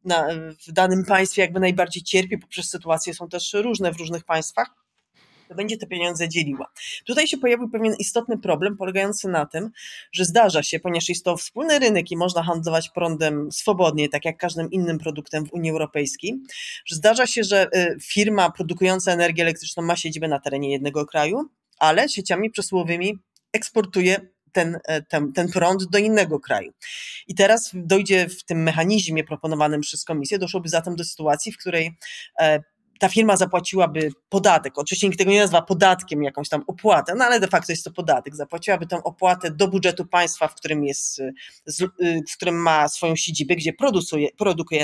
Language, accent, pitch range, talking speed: Polish, native, 160-200 Hz, 165 wpm